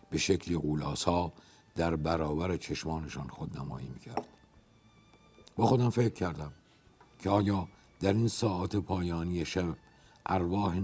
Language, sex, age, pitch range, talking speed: Persian, male, 60-79, 85-105 Hz, 115 wpm